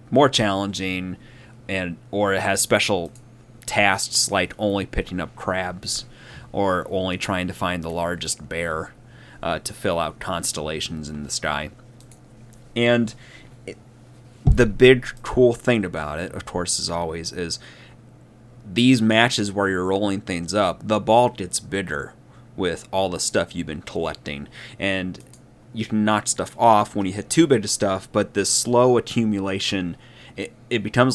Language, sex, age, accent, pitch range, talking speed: English, male, 30-49, American, 95-120 Hz, 150 wpm